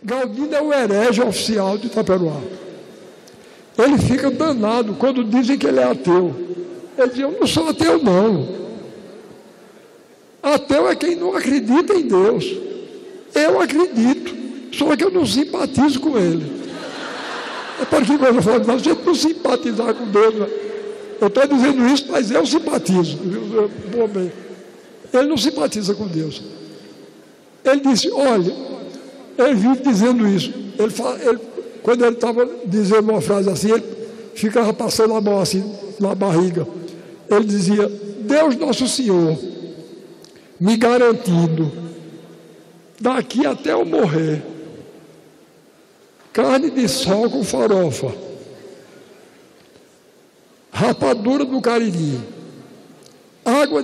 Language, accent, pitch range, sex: Portuguese, Brazilian, 195-275 Hz, male